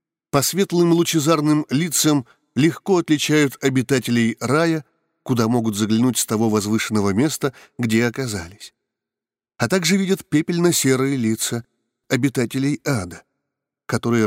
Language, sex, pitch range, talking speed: Russian, male, 110-145 Hz, 105 wpm